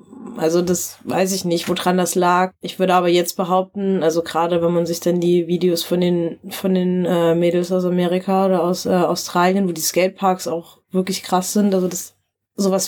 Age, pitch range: 20-39, 170-190 Hz